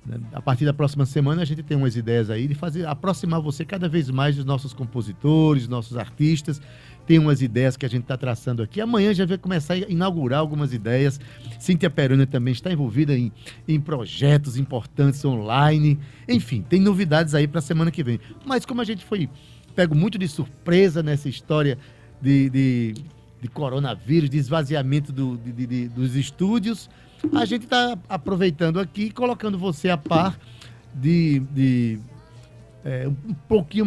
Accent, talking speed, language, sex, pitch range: Brazilian, 175 wpm, Portuguese, male, 125-160 Hz